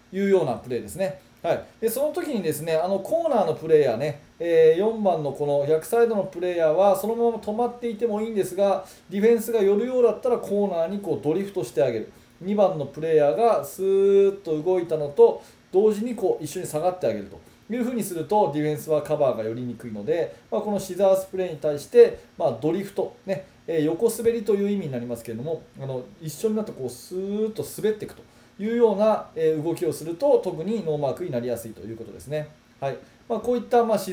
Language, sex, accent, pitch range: Japanese, male, native, 150-220 Hz